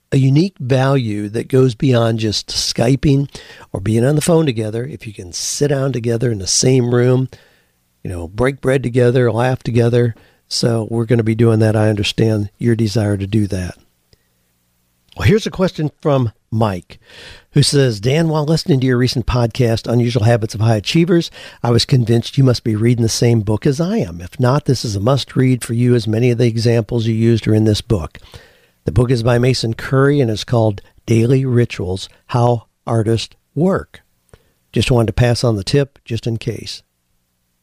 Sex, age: male, 50-69